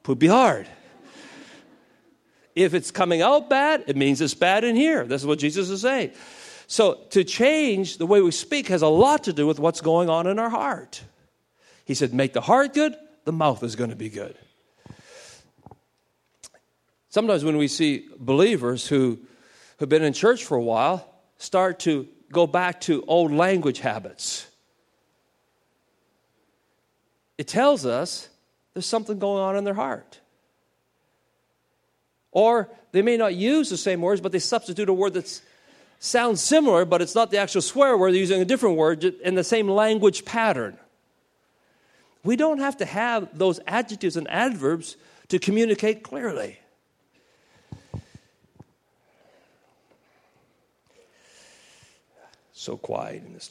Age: 50-69